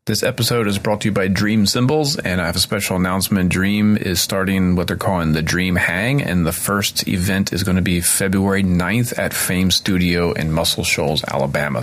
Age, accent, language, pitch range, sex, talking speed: 30-49, American, English, 80-100 Hz, male, 210 wpm